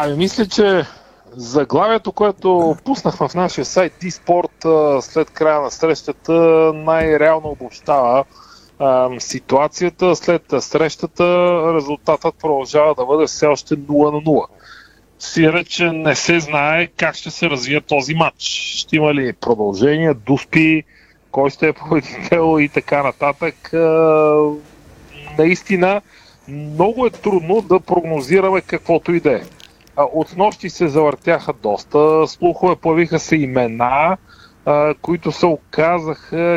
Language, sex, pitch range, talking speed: Bulgarian, male, 140-170 Hz, 115 wpm